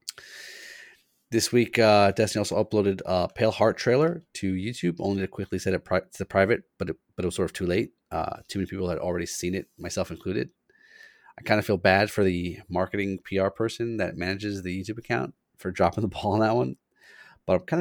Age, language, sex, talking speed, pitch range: 30-49, English, male, 210 wpm, 90-110 Hz